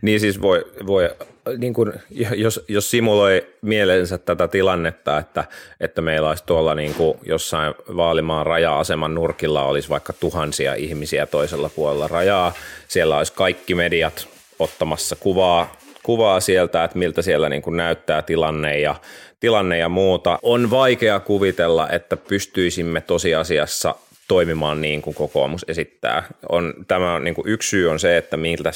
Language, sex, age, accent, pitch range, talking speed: Finnish, male, 30-49, native, 80-100 Hz, 145 wpm